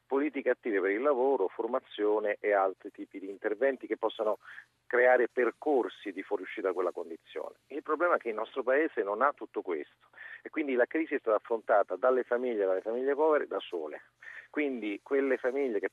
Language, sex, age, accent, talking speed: Italian, male, 40-59, native, 185 wpm